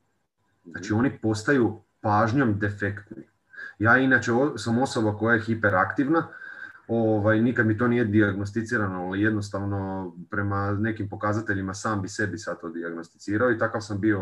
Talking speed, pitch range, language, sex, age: 140 wpm, 100-120 Hz, Croatian, male, 30-49